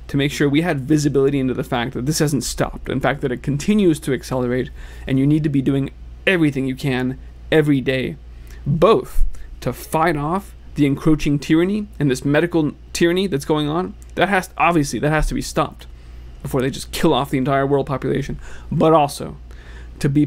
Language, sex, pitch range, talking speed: English, male, 120-155 Hz, 195 wpm